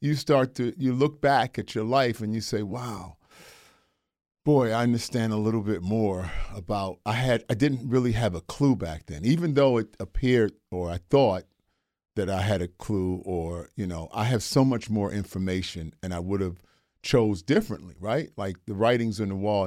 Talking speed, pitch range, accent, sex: 200 wpm, 95-130 Hz, American, male